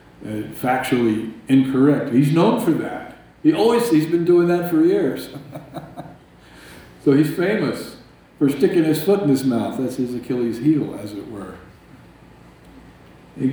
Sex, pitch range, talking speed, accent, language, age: male, 105-135 Hz, 155 wpm, American, English, 50-69